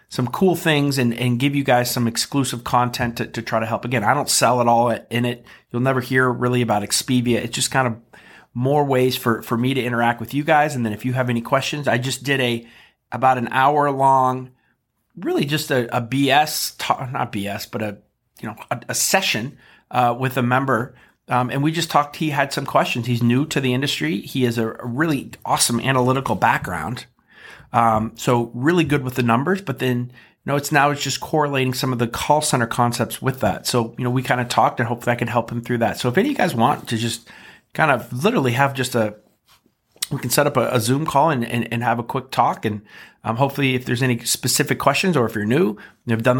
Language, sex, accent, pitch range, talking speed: English, male, American, 115-135 Hz, 240 wpm